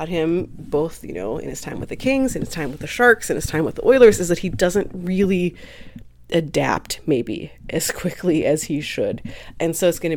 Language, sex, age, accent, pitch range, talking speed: English, female, 30-49, American, 155-215 Hz, 225 wpm